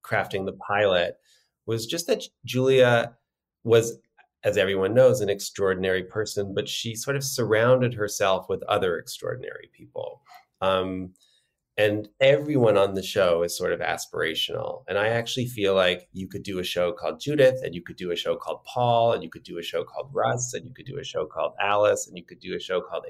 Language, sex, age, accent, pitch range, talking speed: English, male, 30-49, American, 100-130 Hz, 200 wpm